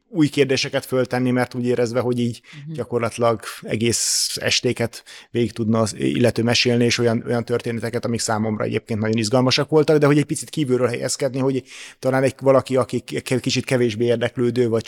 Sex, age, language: male, 30-49, Hungarian